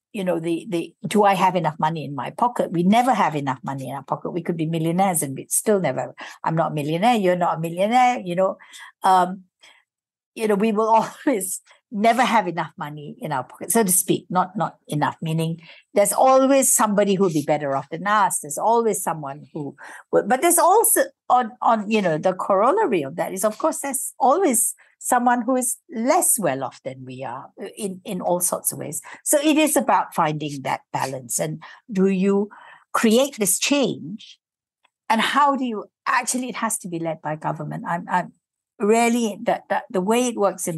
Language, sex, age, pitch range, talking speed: English, female, 60-79, 160-230 Hz, 205 wpm